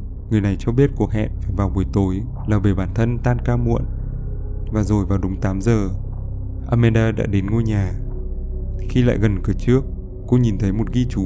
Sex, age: male, 20-39